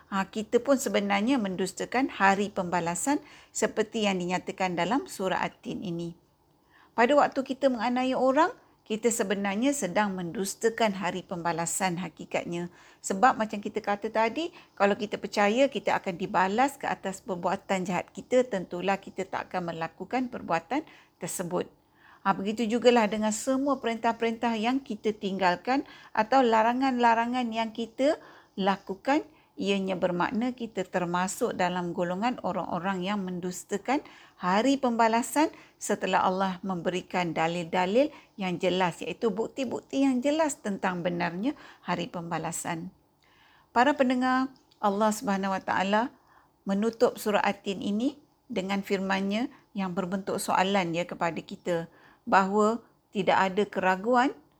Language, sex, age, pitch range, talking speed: Malay, female, 50-69, 185-245 Hz, 120 wpm